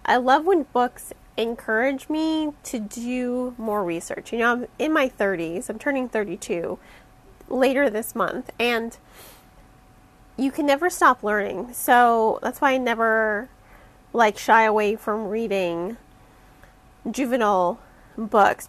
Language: English